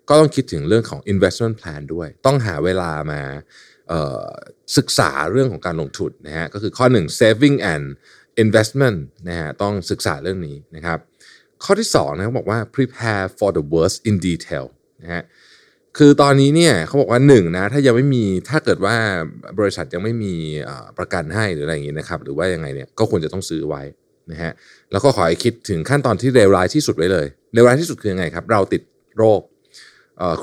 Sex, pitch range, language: male, 85-125 Hz, Thai